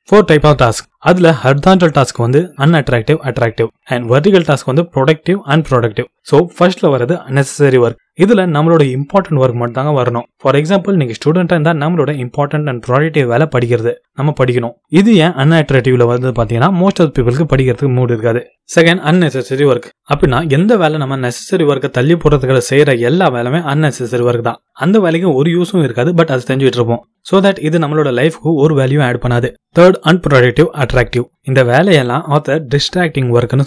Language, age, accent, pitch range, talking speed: Tamil, 20-39, native, 125-160 Hz, 100 wpm